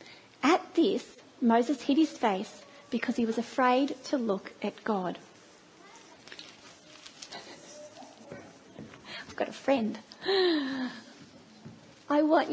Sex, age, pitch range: female, 40-59, 235-310 Hz